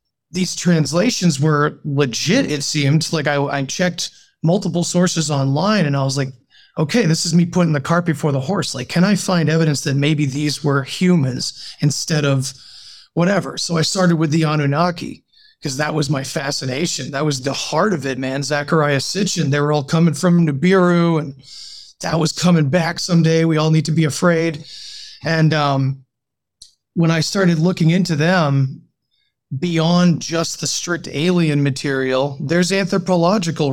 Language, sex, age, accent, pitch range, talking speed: English, male, 30-49, American, 140-175 Hz, 165 wpm